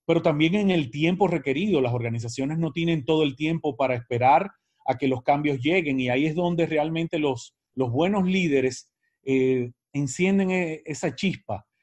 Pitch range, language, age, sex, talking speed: 135-175 Hz, Spanish, 30-49, male, 170 wpm